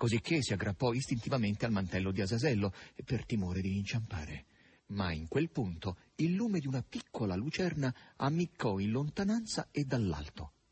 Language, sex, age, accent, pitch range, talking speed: Italian, male, 40-59, native, 95-140 Hz, 150 wpm